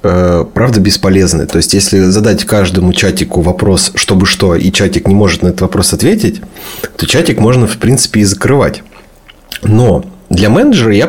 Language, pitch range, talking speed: Russian, 100-125 Hz, 160 wpm